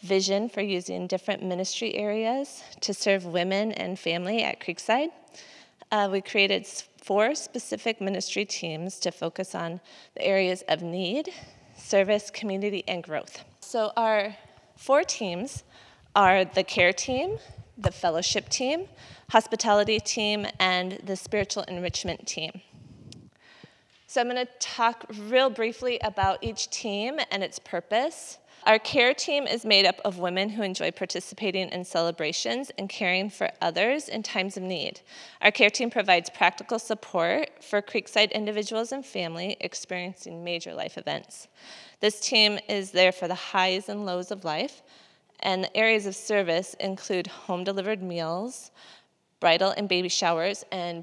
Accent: American